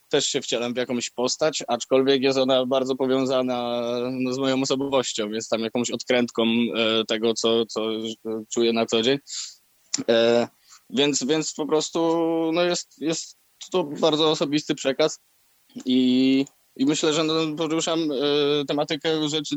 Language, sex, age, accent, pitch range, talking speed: Polish, male, 20-39, native, 120-140 Hz, 145 wpm